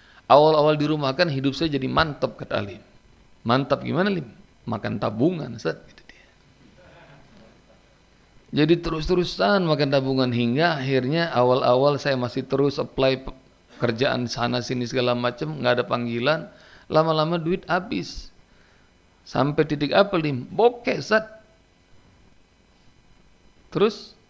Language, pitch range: Indonesian, 120-155 Hz